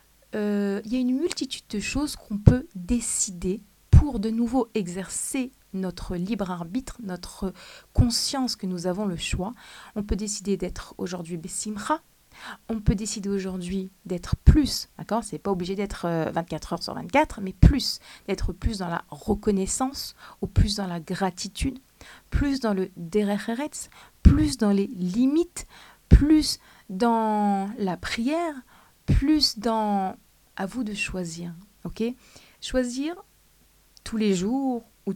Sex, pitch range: female, 190-240 Hz